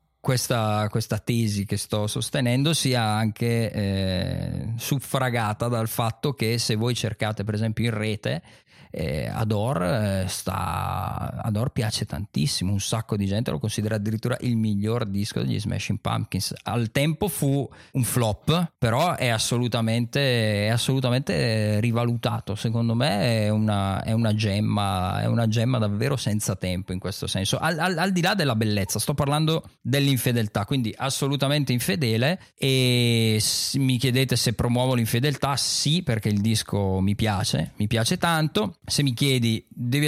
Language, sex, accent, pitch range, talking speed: Italian, male, native, 105-130 Hz, 140 wpm